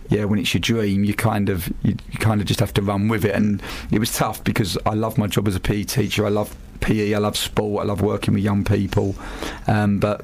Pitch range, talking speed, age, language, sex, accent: 105-115 Hz, 260 wpm, 40-59, English, male, British